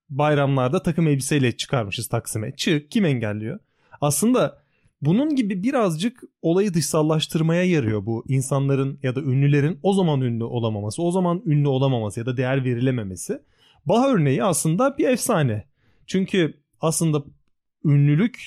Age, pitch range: 30-49, 135-180 Hz